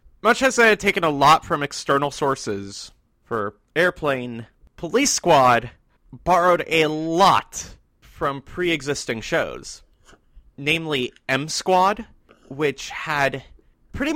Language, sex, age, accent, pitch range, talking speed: English, male, 30-49, American, 125-175 Hz, 105 wpm